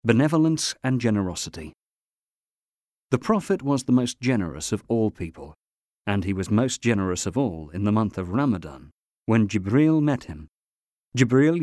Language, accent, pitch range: English, British, 95-130 Hz